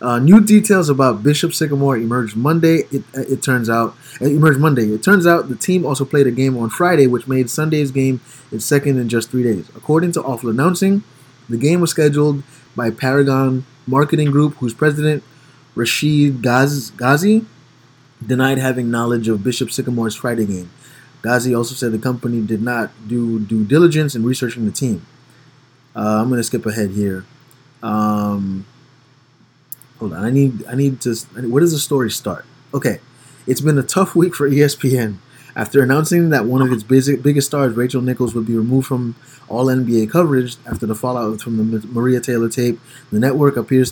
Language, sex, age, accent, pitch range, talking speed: English, male, 20-39, American, 115-140 Hz, 175 wpm